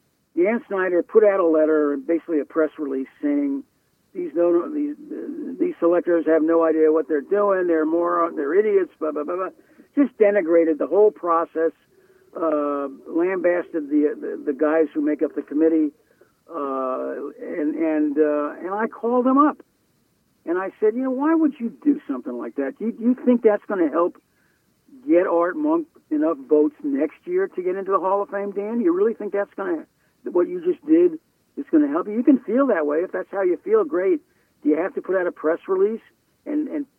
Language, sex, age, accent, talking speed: English, male, 60-79, American, 205 wpm